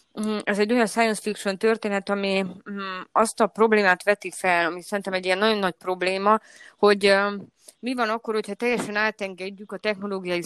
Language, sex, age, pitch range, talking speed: Hungarian, female, 20-39, 185-225 Hz, 160 wpm